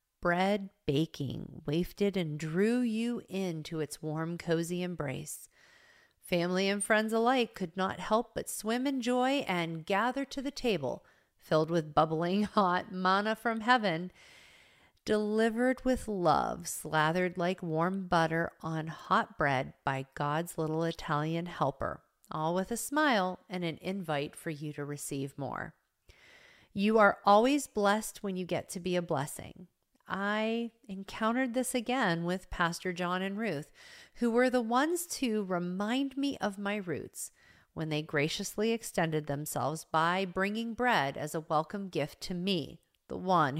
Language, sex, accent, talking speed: English, female, American, 145 wpm